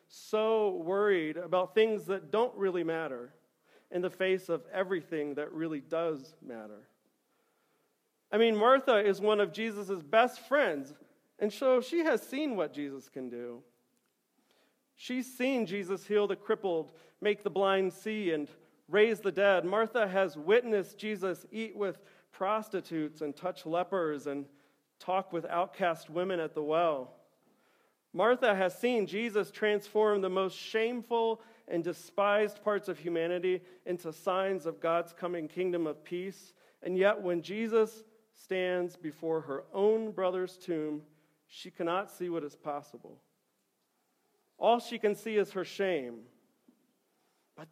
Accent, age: American, 40-59